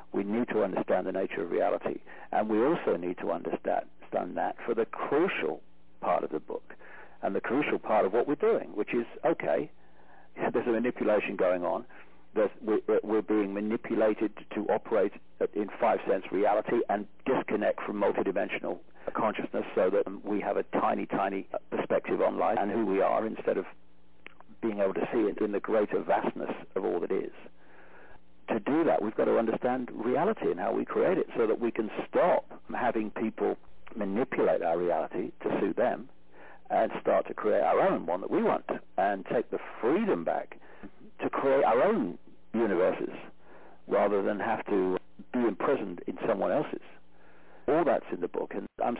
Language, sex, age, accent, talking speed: English, male, 50-69, British, 175 wpm